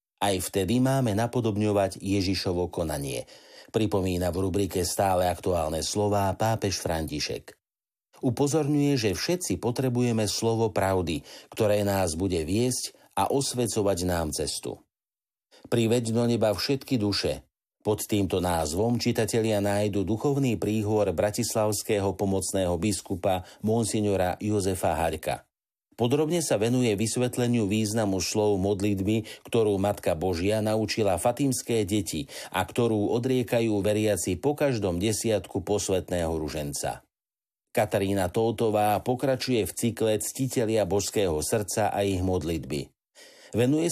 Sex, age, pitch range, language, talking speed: male, 50-69, 95-120 Hz, Slovak, 110 wpm